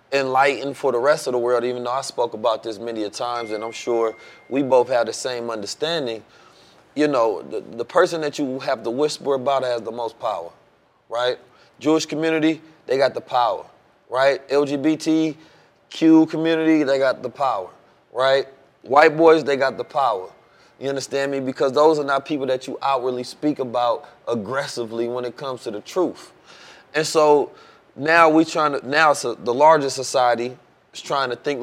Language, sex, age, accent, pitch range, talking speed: English, male, 20-39, American, 125-155 Hz, 180 wpm